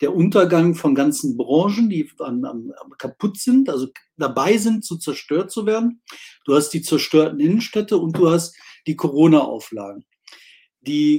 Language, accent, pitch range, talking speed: German, German, 160-235 Hz, 140 wpm